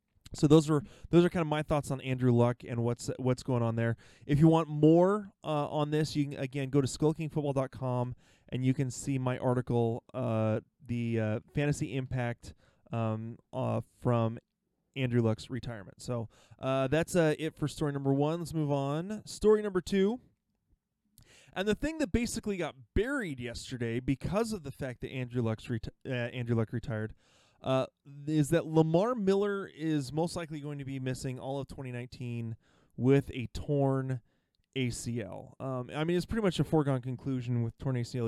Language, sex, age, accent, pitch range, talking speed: English, male, 20-39, American, 120-165 Hz, 175 wpm